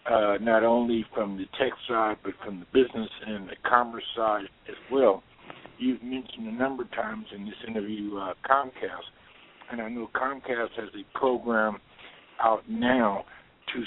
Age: 60-79